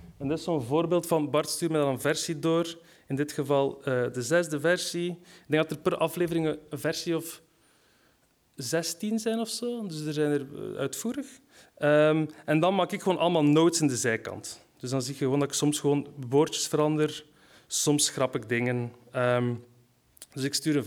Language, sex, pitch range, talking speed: Dutch, male, 140-175 Hz, 200 wpm